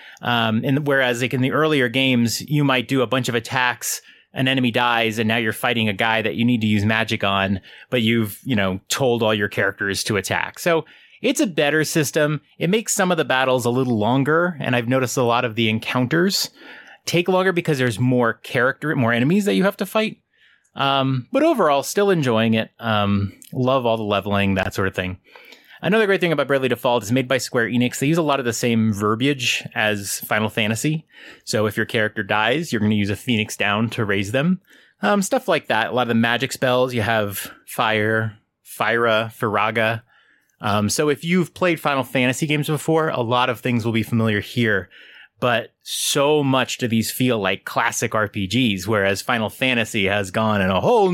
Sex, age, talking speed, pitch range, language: male, 30-49, 210 wpm, 110-140 Hz, English